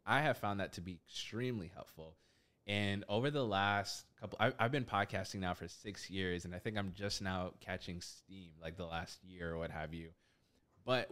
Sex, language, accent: male, English, American